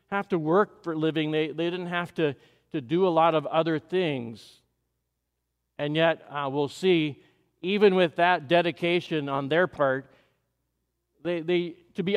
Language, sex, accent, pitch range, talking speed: English, male, American, 150-185 Hz, 170 wpm